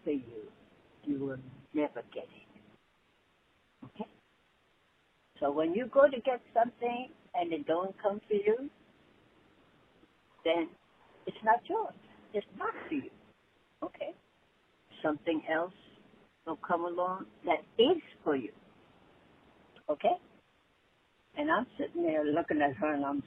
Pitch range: 145-240 Hz